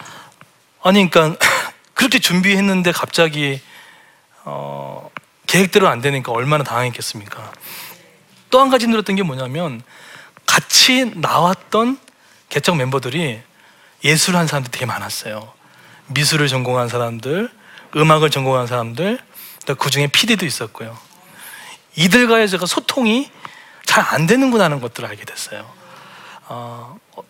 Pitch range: 130-200 Hz